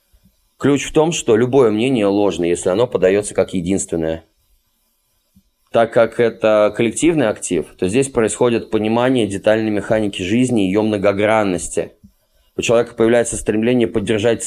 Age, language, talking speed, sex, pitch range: 20-39, Russian, 135 wpm, male, 105-125 Hz